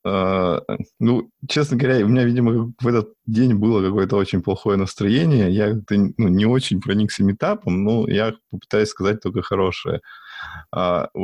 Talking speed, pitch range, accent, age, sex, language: 150 wpm, 85-105 Hz, native, 20-39, male, Russian